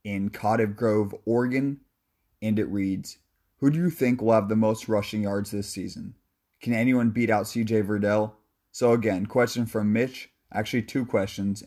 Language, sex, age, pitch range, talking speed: English, male, 20-39, 105-125 Hz, 170 wpm